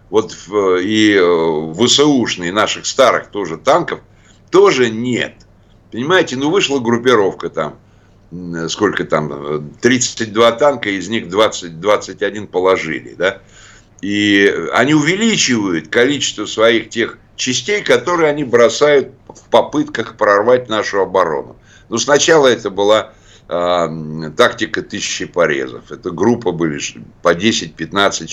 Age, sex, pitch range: 60-79, male, 95-130 Hz